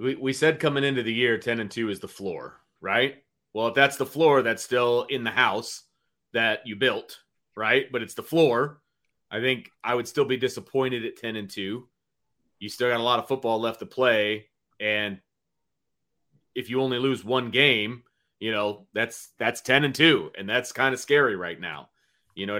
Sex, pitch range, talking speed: male, 115-140 Hz, 200 wpm